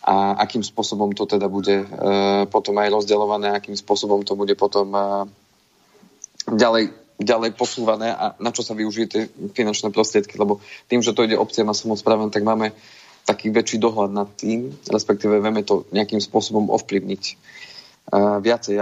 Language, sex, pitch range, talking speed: Slovak, male, 100-110 Hz, 165 wpm